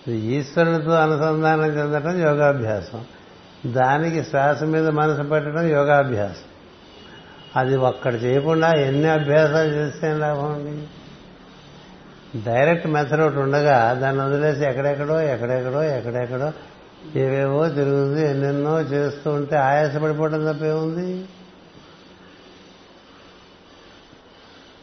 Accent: native